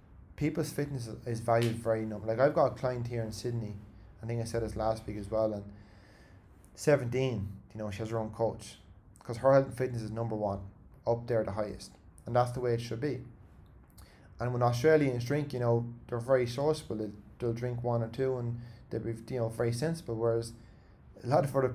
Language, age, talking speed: English, 20-39, 215 wpm